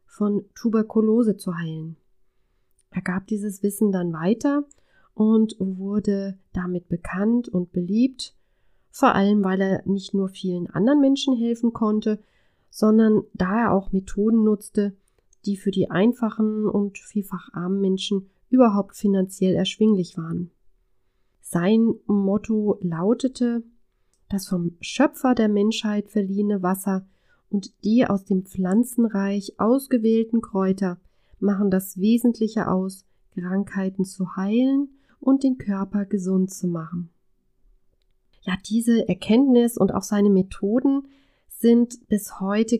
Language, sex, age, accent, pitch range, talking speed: German, female, 30-49, German, 190-225 Hz, 120 wpm